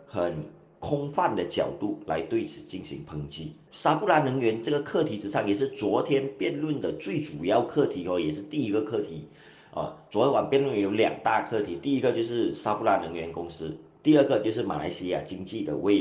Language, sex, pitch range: Chinese, male, 85-140 Hz